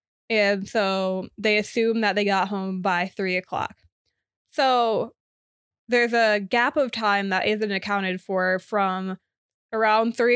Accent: American